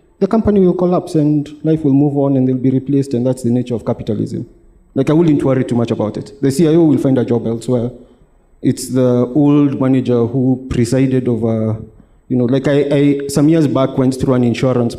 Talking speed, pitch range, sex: 210 wpm, 125-155 Hz, male